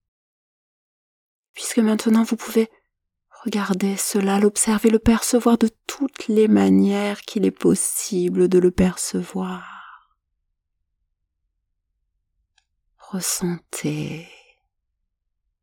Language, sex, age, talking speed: French, female, 40-59, 75 wpm